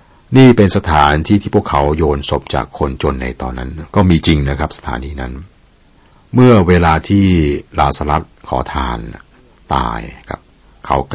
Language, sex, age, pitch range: Thai, male, 60-79, 65-85 Hz